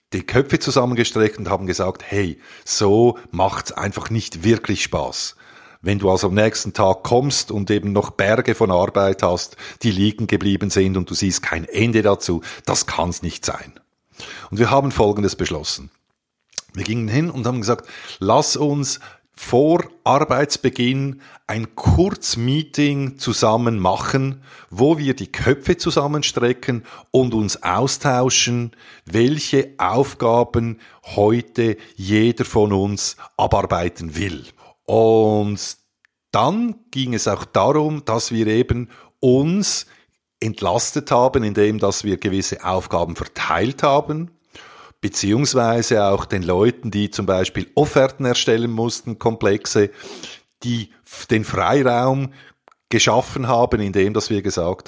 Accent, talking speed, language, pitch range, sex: Austrian, 125 wpm, German, 100-130 Hz, male